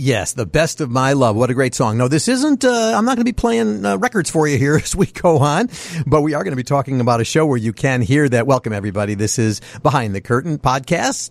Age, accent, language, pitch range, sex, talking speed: 50-69, American, English, 105-145 Hz, male, 275 wpm